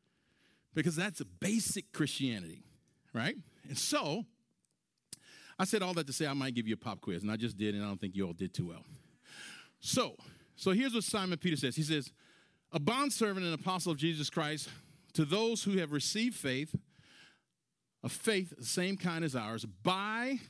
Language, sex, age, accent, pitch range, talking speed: English, male, 40-59, American, 130-205 Hz, 190 wpm